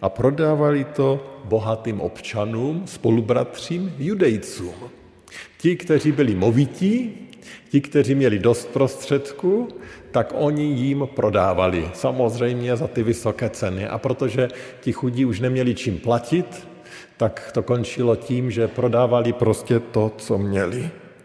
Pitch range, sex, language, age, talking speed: 105-130 Hz, male, Slovak, 50-69, 120 wpm